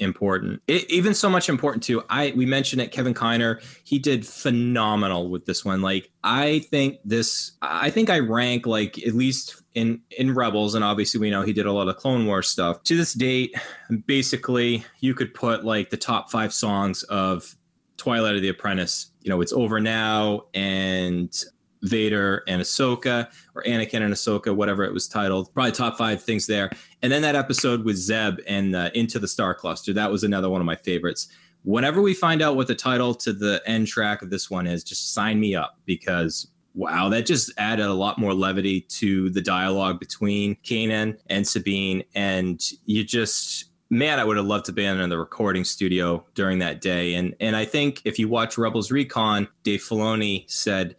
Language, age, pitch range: English, 20-39, 95-120 Hz